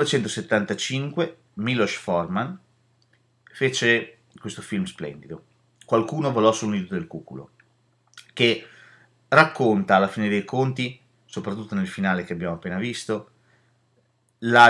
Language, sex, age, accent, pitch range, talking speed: Italian, male, 30-49, native, 105-135 Hz, 110 wpm